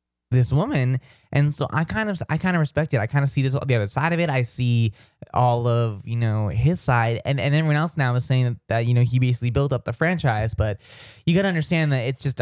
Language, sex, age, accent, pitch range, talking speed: English, male, 20-39, American, 115-135 Hz, 265 wpm